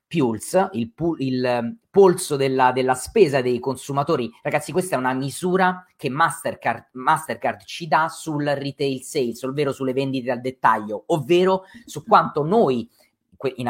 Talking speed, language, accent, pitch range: 140 wpm, Italian, native, 130-170 Hz